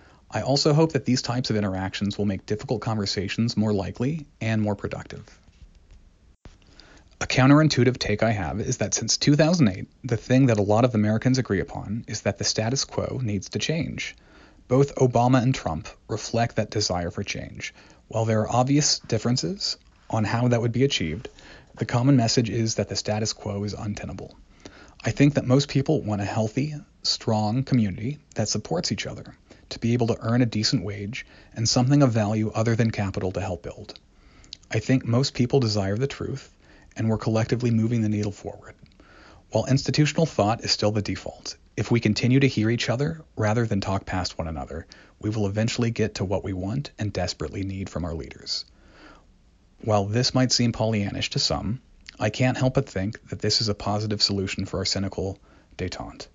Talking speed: 185 wpm